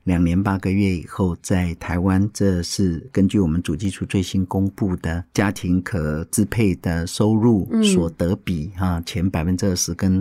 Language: Chinese